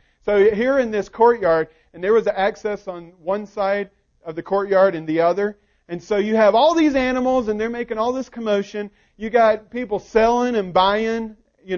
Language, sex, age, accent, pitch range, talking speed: English, male, 40-59, American, 175-220 Hz, 195 wpm